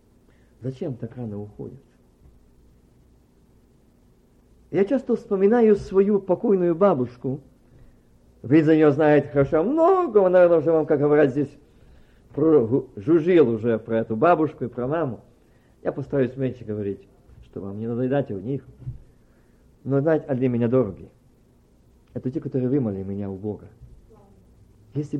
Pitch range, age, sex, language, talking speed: 110-160 Hz, 50-69, male, Russian, 130 wpm